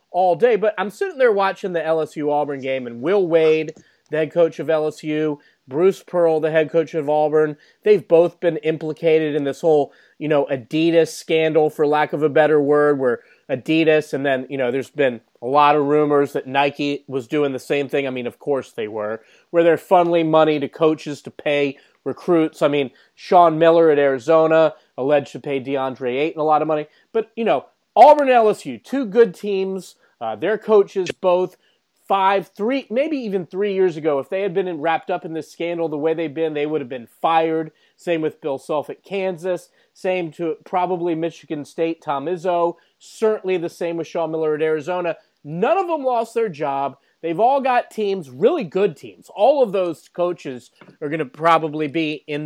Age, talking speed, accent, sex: 30-49, 200 wpm, American, male